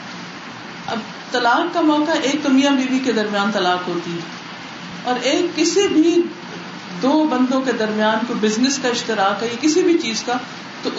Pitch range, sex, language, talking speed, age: 200-265 Hz, female, Urdu, 175 wpm, 50-69